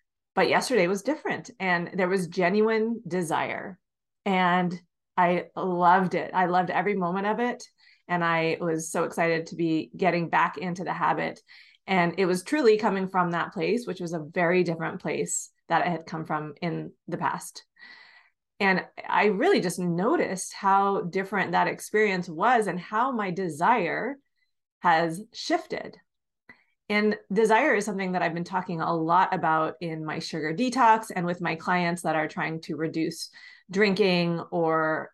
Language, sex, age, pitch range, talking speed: English, female, 30-49, 170-210 Hz, 160 wpm